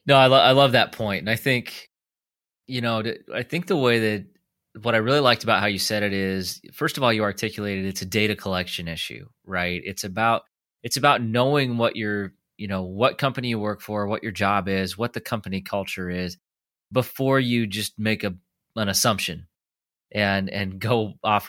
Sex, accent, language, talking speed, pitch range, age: male, American, English, 205 wpm, 95-115 Hz, 30-49